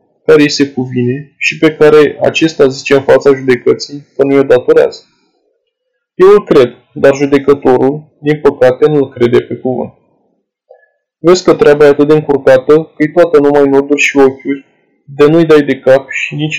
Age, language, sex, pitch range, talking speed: 20-39, Romanian, male, 140-160 Hz, 170 wpm